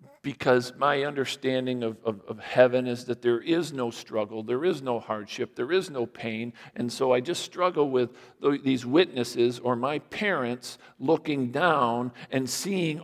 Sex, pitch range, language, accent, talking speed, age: male, 125-180 Hz, English, American, 170 wpm, 50-69